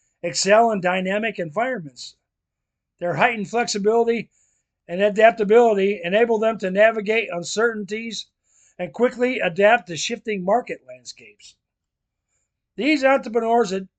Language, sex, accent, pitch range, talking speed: English, male, American, 165-225 Hz, 100 wpm